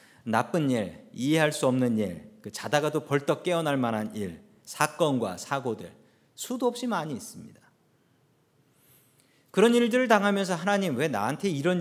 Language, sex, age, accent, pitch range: Korean, male, 40-59, native, 135-200 Hz